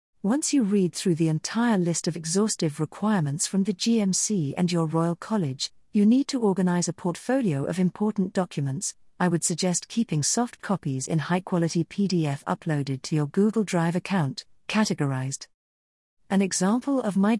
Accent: British